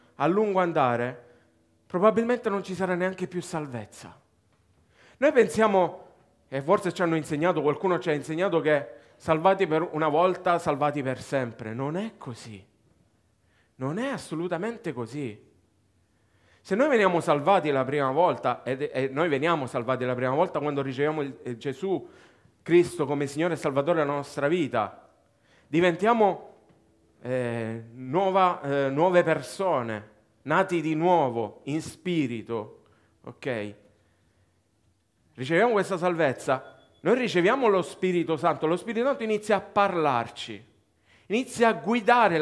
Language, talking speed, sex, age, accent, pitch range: Italian, 125 wpm, male, 40-59, native, 125-195 Hz